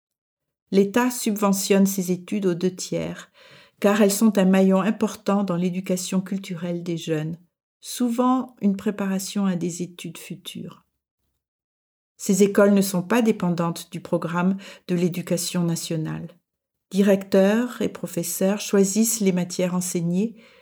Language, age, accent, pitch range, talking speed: French, 50-69, French, 175-200 Hz, 125 wpm